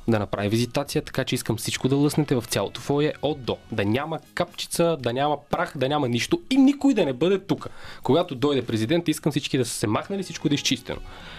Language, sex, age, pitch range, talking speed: Bulgarian, male, 20-39, 115-155 Hz, 215 wpm